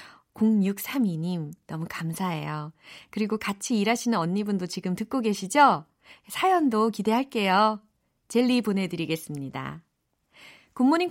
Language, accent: Korean, native